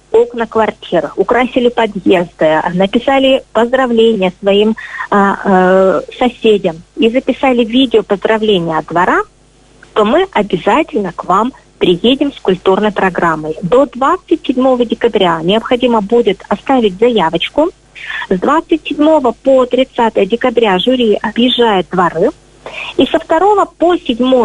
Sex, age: female, 30-49